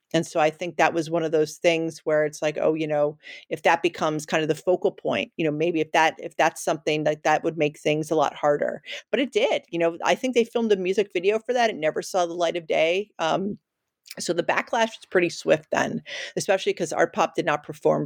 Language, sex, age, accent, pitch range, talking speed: English, female, 40-59, American, 155-190 Hz, 255 wpm